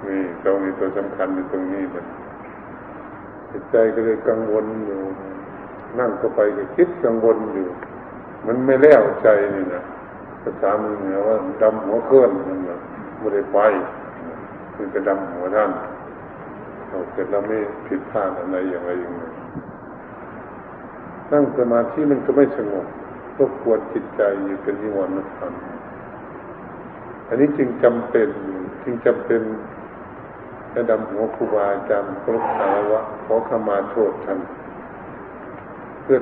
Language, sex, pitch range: Thai, male, 95-120 Hz